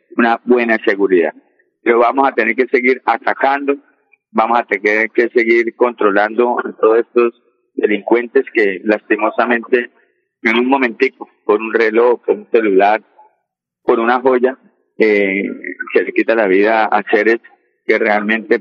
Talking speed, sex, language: 140 wpm, male, Spanish